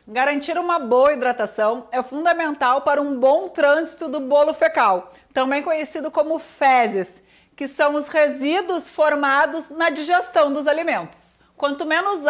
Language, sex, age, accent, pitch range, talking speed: Portuguese, female, 40-59, Brazilian, 270-320 Hz, 135 wpm